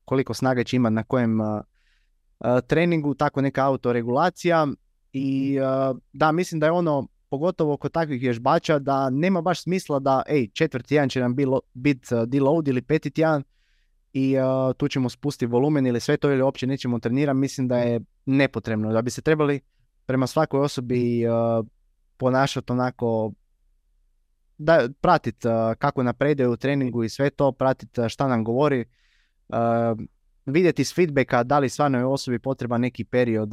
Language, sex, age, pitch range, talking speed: Croatian, male, 20-39, 115-145 Hz, 165 wpm